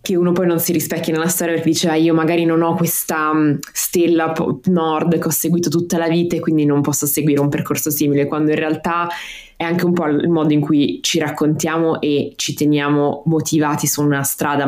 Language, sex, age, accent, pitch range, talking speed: Italian, female, 20-39, native, 140-165 Hz, 220 wpm